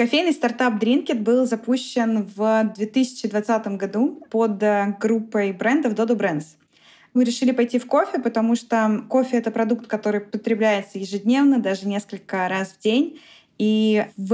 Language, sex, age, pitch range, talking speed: Russian, female, 20-39, 205-240 Hz, 140 wpm